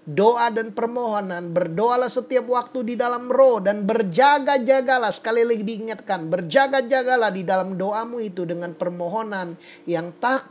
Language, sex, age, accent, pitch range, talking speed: Indonesian, male, 30-49, native, 170-225 Hz, 130 wpm